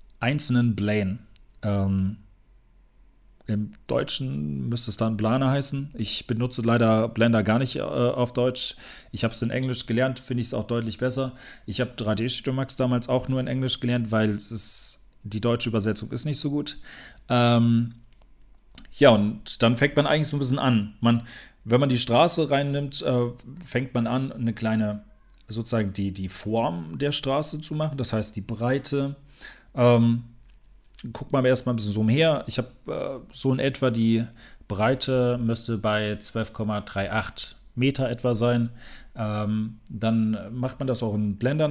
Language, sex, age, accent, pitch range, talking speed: German, male, 40-59, German, 110-130 Hz, 170 wpm